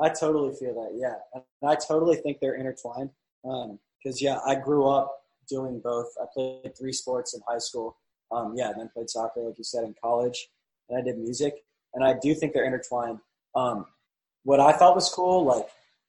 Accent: American